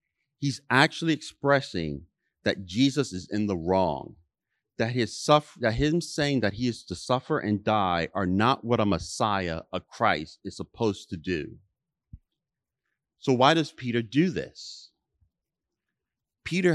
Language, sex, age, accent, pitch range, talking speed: English, male, 40-59, American, 95-130 Hz, 145 wpm